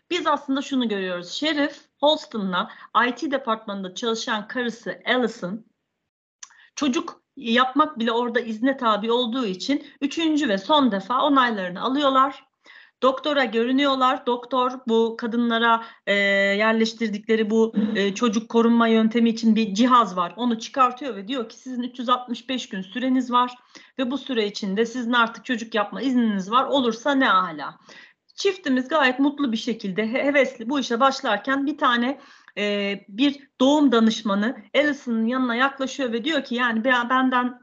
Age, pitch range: 40-59, 230-275 Hz